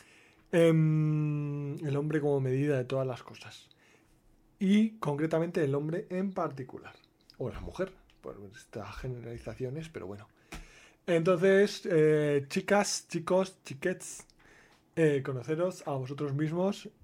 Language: Spanish